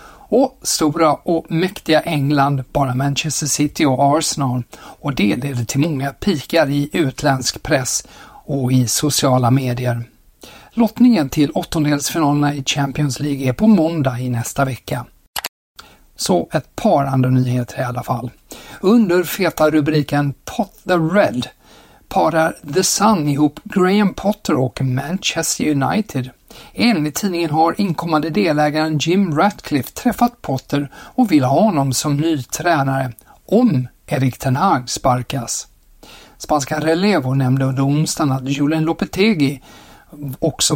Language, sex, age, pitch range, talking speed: Swedish, male, 60-79, 135-170 Hz, 125 wpm